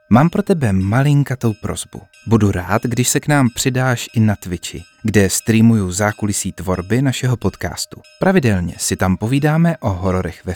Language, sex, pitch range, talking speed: Czech, male, 95-130 Hz, 160 wpm